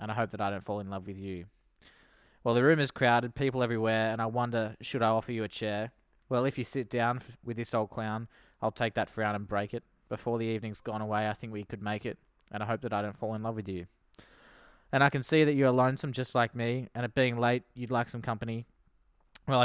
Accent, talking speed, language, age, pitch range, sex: Australian, 260 wpm, English, 20-39, 105-120 Hz, male